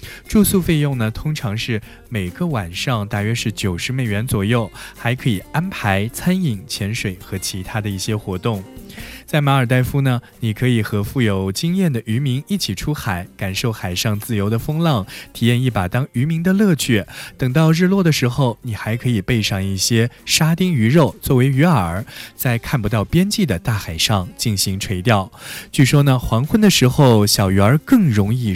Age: 20-39